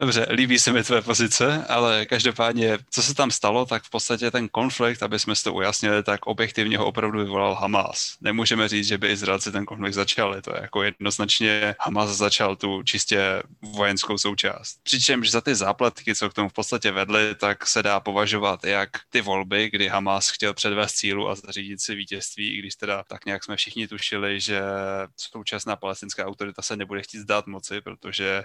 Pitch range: 100-110 Hz